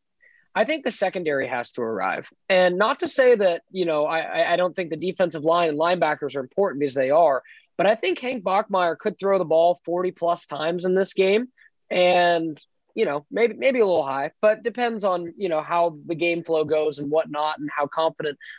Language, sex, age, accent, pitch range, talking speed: English, male, 20-39, American, 155-190 Hz, 215 wpm